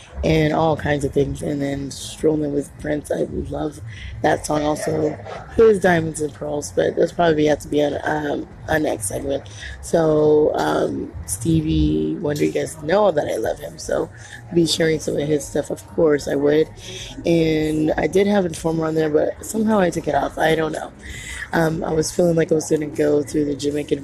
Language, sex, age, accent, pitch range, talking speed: English, female, 20-39, American, 140-170 Hz, 200 wpm